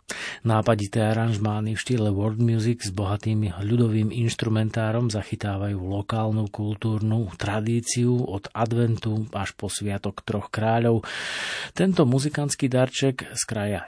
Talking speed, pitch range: 110 wpm, 100-115 Hz